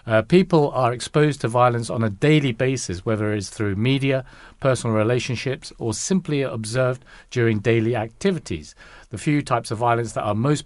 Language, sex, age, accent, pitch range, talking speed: English, male, 50-69, British, 105-130 Hz, 170 wpm